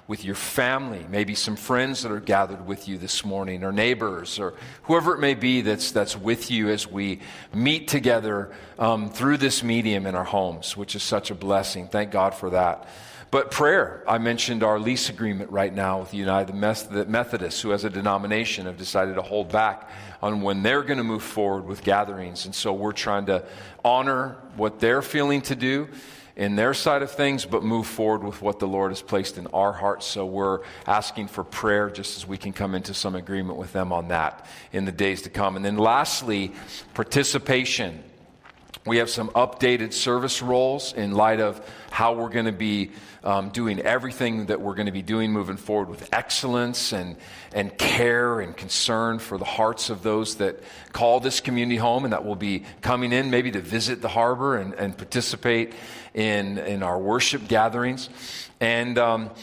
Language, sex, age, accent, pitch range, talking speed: English, male, 40-59, American, 100-120 Hz, 195 wpm